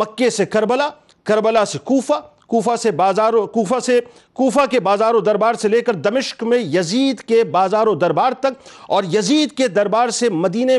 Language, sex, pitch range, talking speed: Urdu, male, 200-245 Hz, 180 wpm